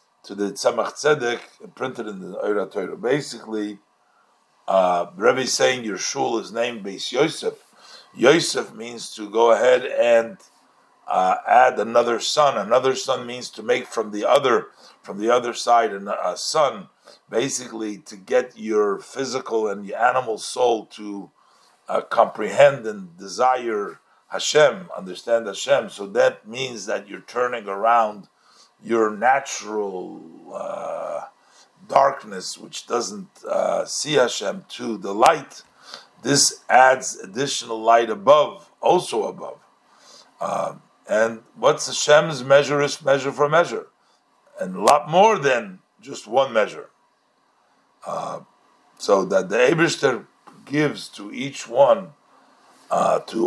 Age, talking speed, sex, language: 50-69, 130 wpm, male, English